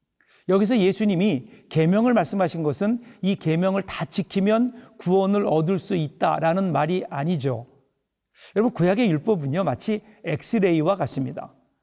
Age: 60-79